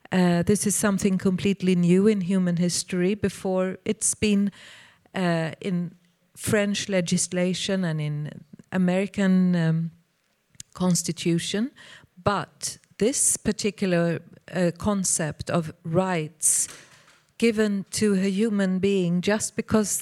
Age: 40-59